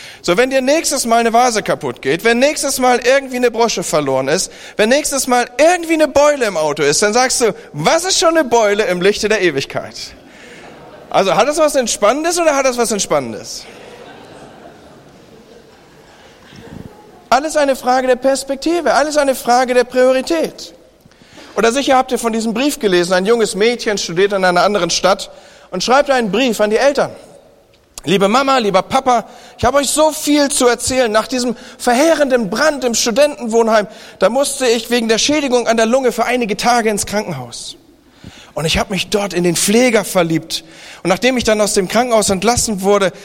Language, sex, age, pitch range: German, male, 40-59, 195-260 Hz